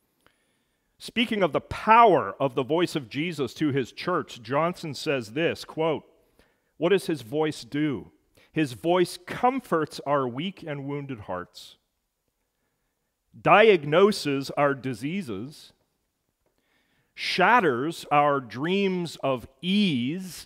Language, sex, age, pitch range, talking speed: English, male, 40-59, 135-180 Hz, 110 wpm